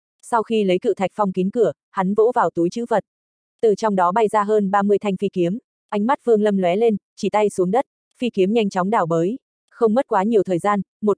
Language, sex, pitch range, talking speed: Vietnamese, female, 185-225 Hz, 250 wpm